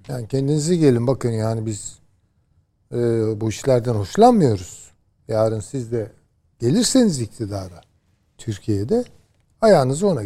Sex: male